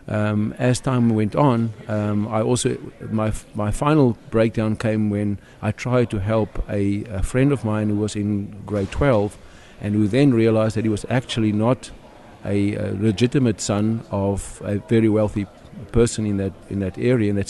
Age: 50-69